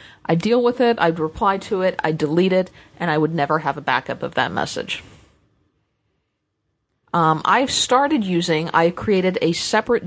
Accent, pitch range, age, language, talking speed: American, 150-185 Hz, 40-59, English, 175 wpm